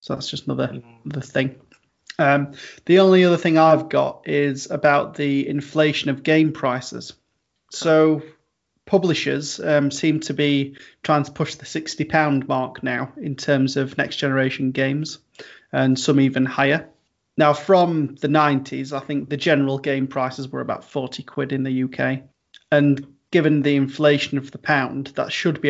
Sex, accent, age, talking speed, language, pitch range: male, British, 30-49, 165 wpm, English, 135-155 Hz